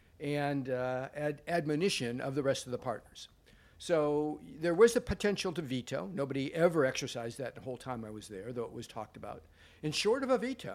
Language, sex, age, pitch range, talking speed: English, male, 50-69, 130-180 Hz, 205 wpm